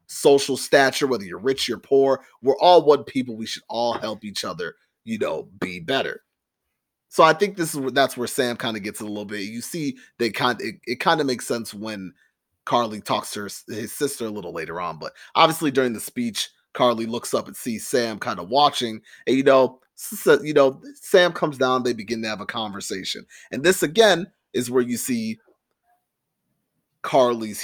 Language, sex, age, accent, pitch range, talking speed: English, male, 30-49, American, 115-155 Hz, 205 wpm